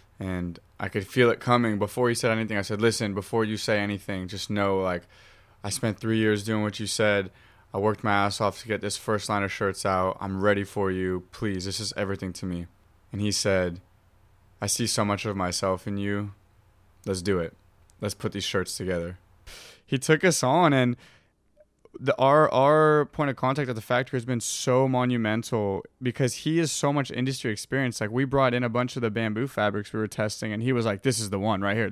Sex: male